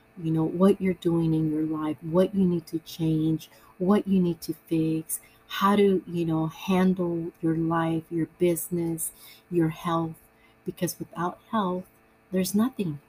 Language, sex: English, female